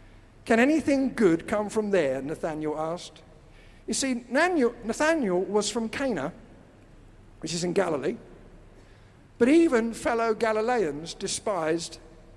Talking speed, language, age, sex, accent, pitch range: 110 wpm, English, 50-69, male, British, 140-230 Hz